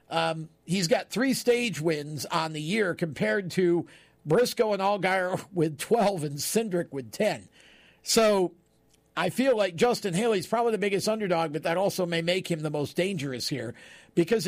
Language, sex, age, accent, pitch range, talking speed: English, male, 50-69, American, 165-205 Hz, 170 wpm